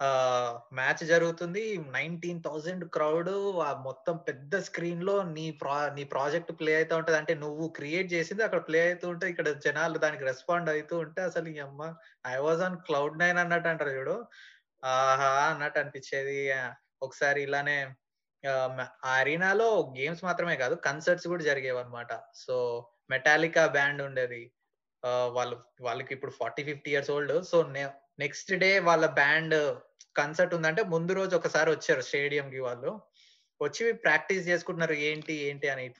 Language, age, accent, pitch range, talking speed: Telugu, 20-39, native, 135-170 Hz, 140 wpm